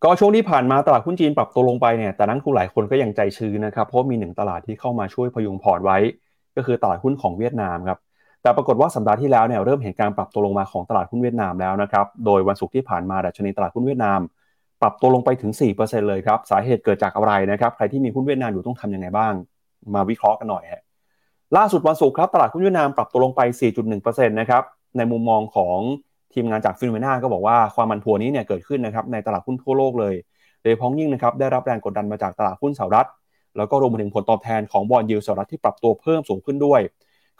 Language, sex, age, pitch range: Thai, male, 30-49, 105-135 Hz